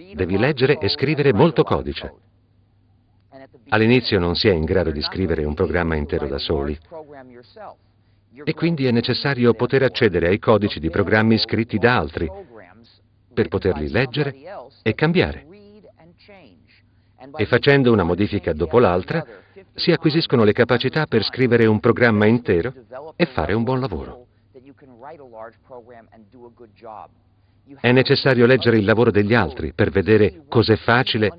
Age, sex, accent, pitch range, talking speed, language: 50-69, male, native, 100-135 Hz, 130 wpm, Italian